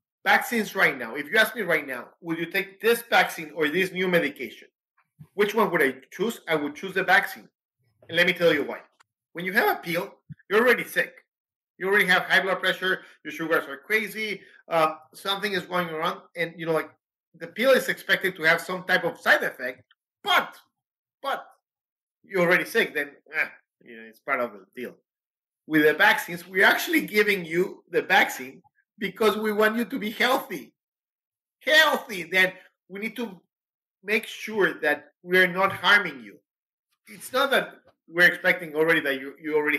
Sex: male